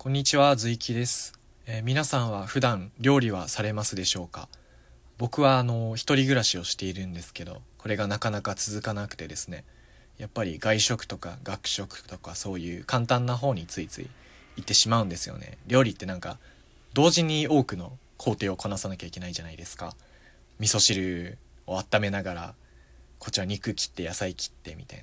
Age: 20-39